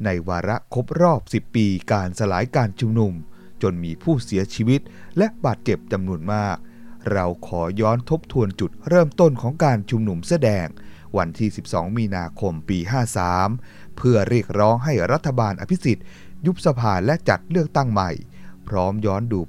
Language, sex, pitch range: Thai, male, 90-125 Hz